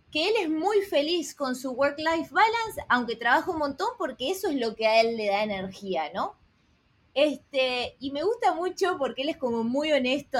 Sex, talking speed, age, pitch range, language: female, 195 wpm, 20-39, 225-310 Hz, Spanish